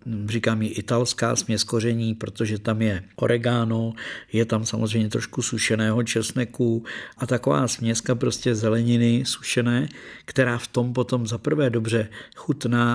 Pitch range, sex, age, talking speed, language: 105-120 Hz, male, 50-69, 130 wpm, Czech